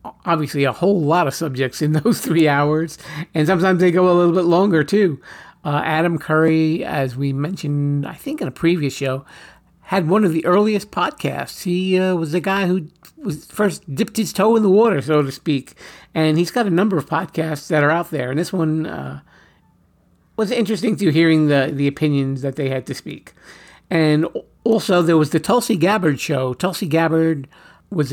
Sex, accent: male, American